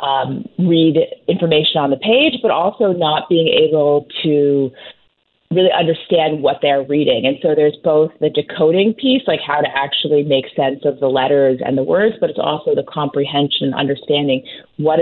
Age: 30-49